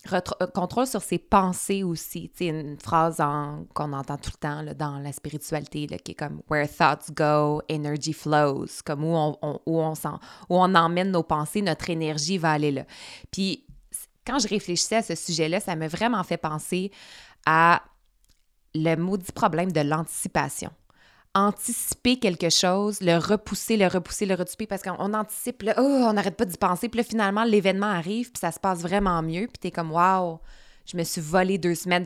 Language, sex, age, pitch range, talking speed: French, female, 20-39, 165-215 Hz, 195 wpm